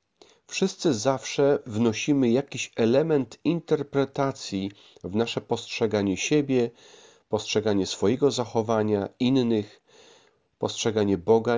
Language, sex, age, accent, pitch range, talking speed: Polish, male, 40-59, native, 105-140 Hz, 85 wpm